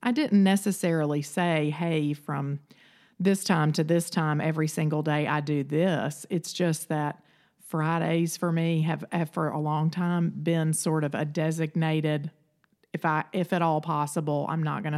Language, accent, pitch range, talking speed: English, American, 150-175 Hz, 170 wpm